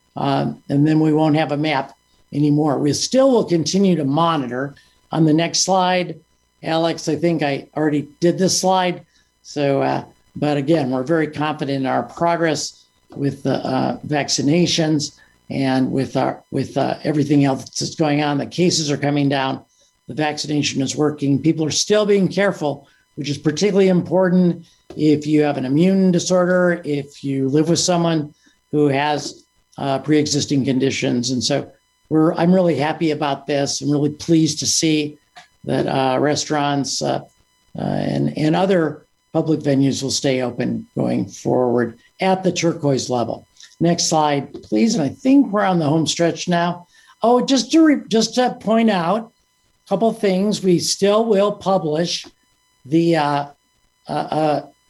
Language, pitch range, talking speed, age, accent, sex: English, 140-175 Hz, 165 wpm, 50-69, American, male